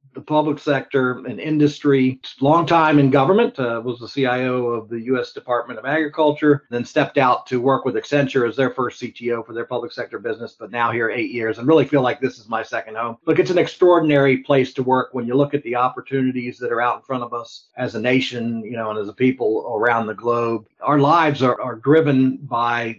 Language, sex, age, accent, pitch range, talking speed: English, male, 40-59, American, 125-145 Hz, 225 wpm